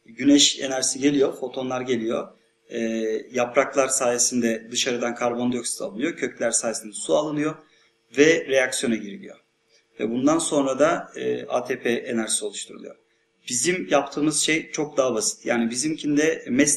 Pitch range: 120-150 Hz